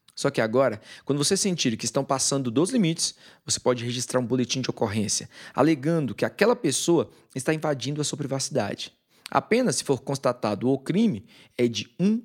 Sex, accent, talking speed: male, Brazilian, 175 wpm